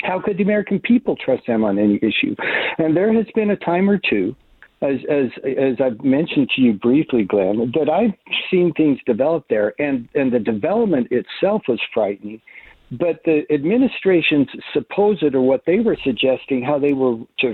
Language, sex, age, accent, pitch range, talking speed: English, male, 60-79, American, 125-190 Hz, 180 wpm